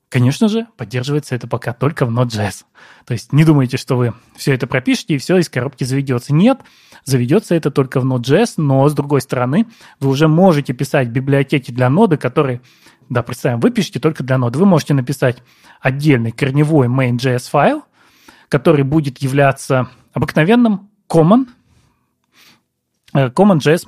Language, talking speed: Russian, 150 wpm